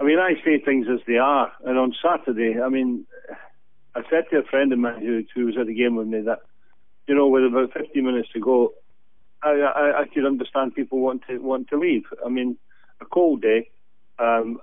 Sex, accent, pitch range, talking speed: male, British, 115-140 Hz, 220 wpm